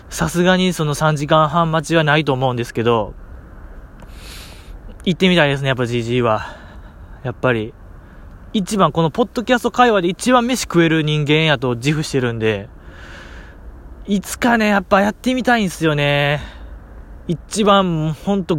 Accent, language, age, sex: native, Japanese, 20-39, male